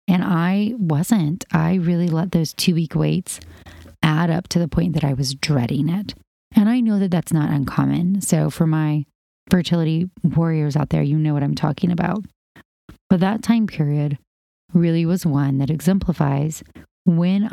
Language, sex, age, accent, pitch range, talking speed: English, female, 30-49, American, 150-180 Hz, 170 wpm